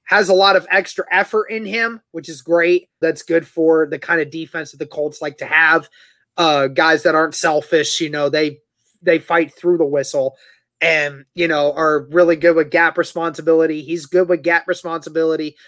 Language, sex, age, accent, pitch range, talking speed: English, male, 30-49, American, 160-190 Hz, 195 wpm